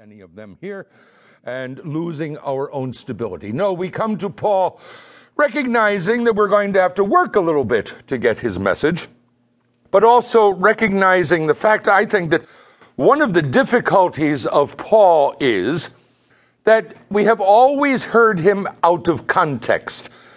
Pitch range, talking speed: 155-210 Hz, 155 wpm